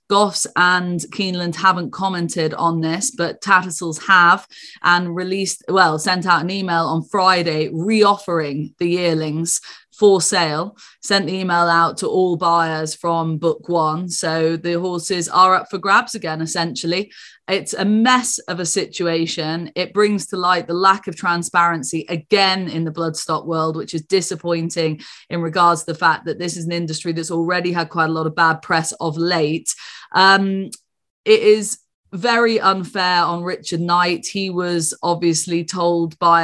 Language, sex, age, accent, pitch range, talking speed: English, female, 20-39, British, 165-185 Hz, 165 wpm